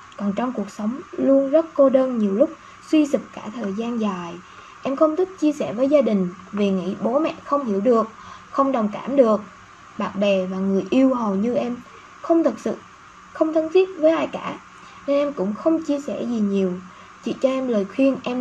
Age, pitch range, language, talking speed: 20-39, 200-275 Hz, Vietnamese, 215 wpm